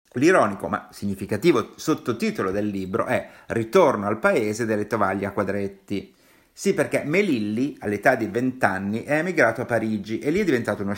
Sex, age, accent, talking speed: male, 50-69, native, 165 wpm